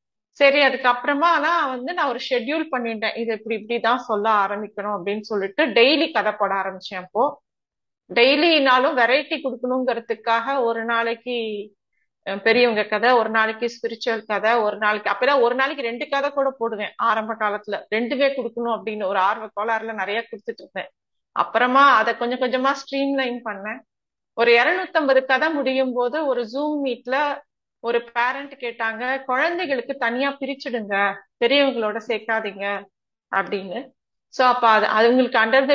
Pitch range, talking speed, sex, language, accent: 220-270 Hz, 140 wpm, female, Tamil, native